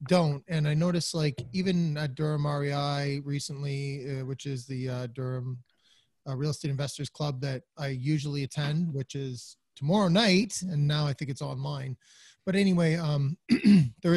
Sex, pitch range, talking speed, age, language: male, 130-155 Hz, 165 wpm, 20-39, English